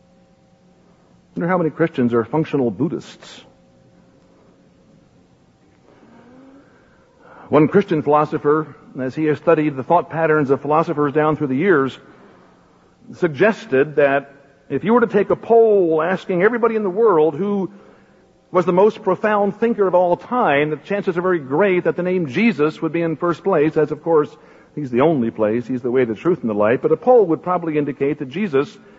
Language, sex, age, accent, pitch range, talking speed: English, male, 60-79, American, 150-210 Hz, 175 wpm